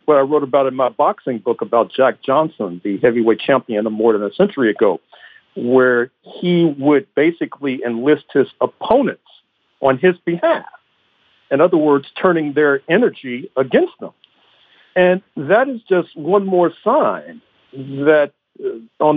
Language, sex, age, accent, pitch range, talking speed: English, male, 50-69, American, 120-170 Hz, 145 wpm